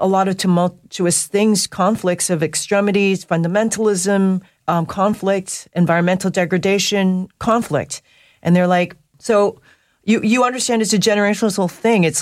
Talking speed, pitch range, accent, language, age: 130 wpm, 155-195 Hz, American, English, 40-59